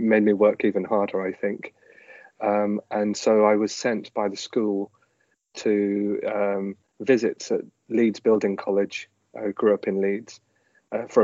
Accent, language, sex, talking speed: British, English, male, 160 wpm